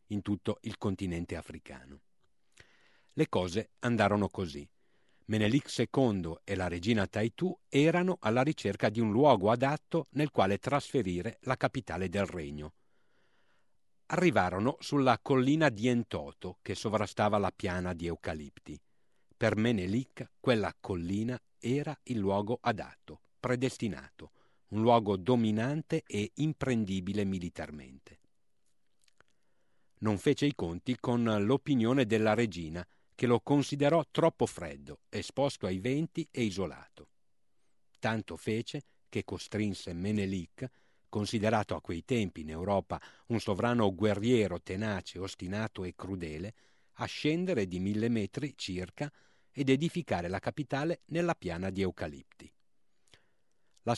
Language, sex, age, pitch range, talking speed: Italian, male, 50-69, 95-130 Hz, 120 wpm